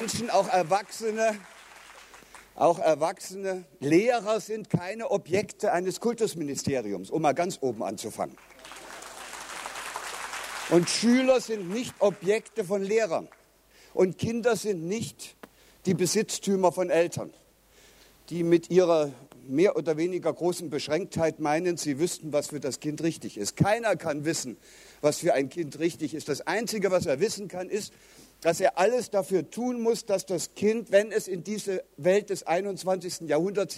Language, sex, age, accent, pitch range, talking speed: German, male, 50-69, German, 165-210 Hz, 145 wpm